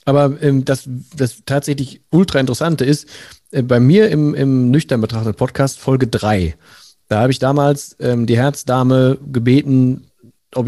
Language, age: German, 40-59